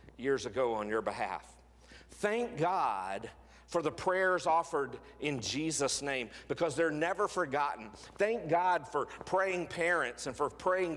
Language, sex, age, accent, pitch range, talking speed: English, male, 50-69, American, 130-180 Hz, 140 wpm